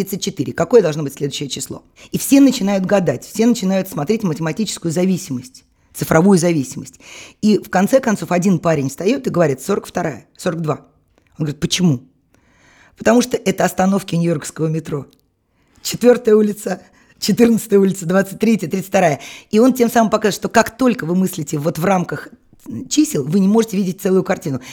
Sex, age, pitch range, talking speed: female, 20-39, 150-200 Hz, 155 wpm